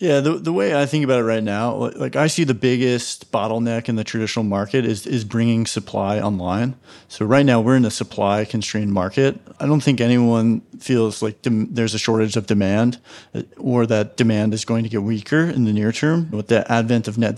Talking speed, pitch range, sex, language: 220 wpm, 110-130 Hz, male, English